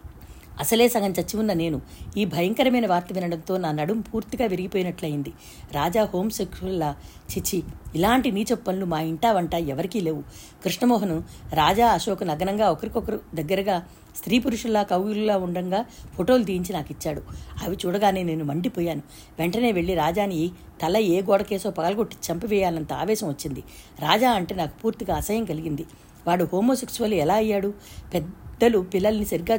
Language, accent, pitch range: Telugu, native, 170-215 Hz